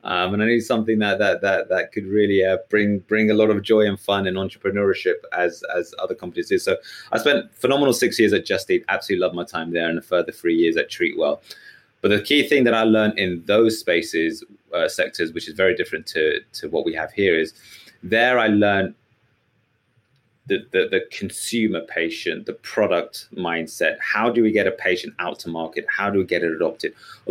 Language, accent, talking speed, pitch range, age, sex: English, British, 215 wpm, 90-135 Hz, 30-49, male